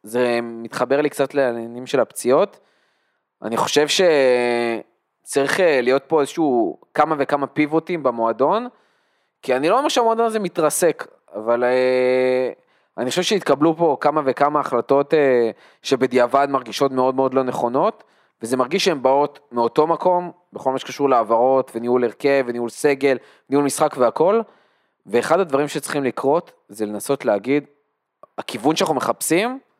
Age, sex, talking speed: 20-39, male, 130 wpm